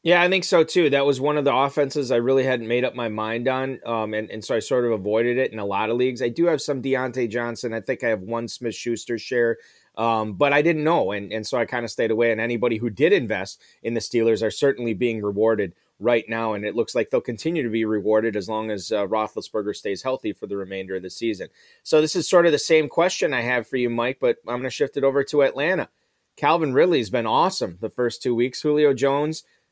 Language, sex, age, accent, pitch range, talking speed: English, male, 30-49, American, 110-135 Hz, 260 wpm